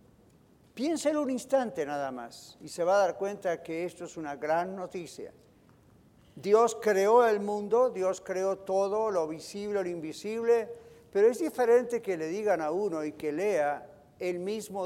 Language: Spanish